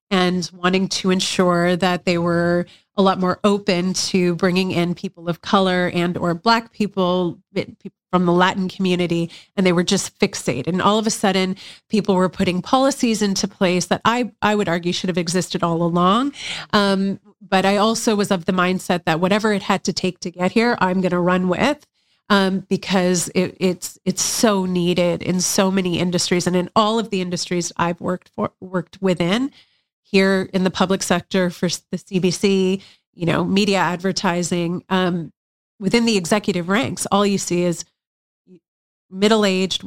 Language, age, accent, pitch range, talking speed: English, 30-49, American, 180-195 Hz, 180 wpm